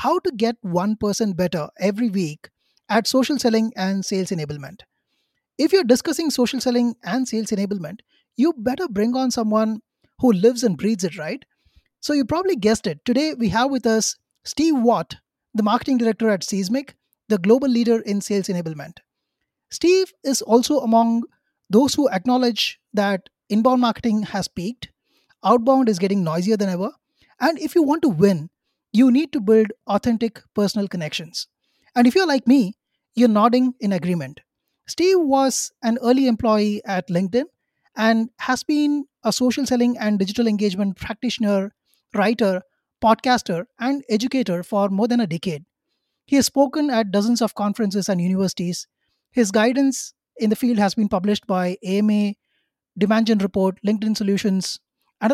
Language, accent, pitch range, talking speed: English, Indian, 200-255 Hz, 160 wpm